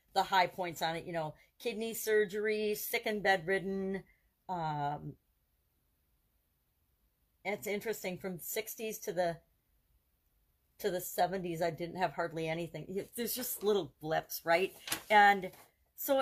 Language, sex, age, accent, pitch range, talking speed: English, female, 40-59, American, 165-215 Hz, 125 wpm